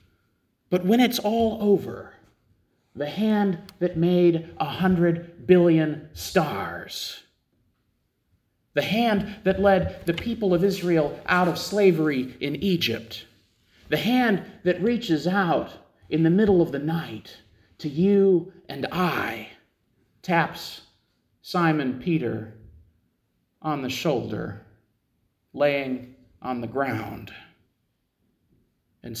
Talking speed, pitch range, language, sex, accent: 105 wpm, 115-185 Hz, English, male, American